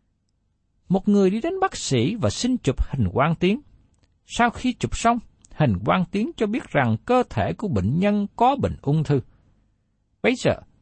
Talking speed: 185 wpm